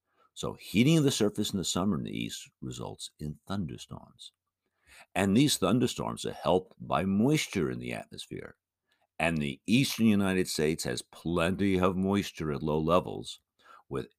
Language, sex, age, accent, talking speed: English, male, 60-79, American, 155 wpm